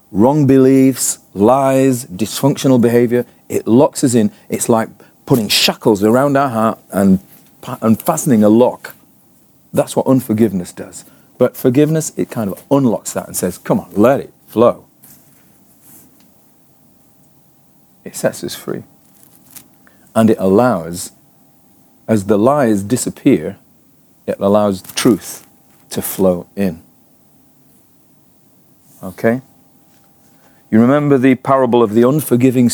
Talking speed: 115 wpm